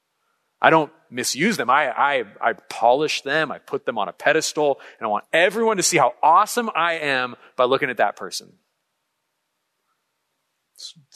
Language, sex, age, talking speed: English, male, 40-59, 165 wpm